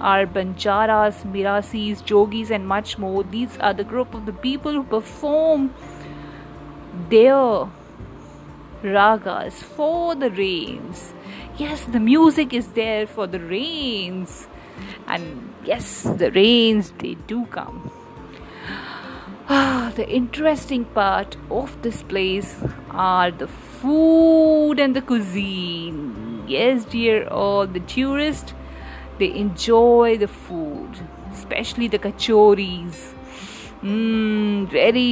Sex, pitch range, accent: female, 185-245 Hz, Indian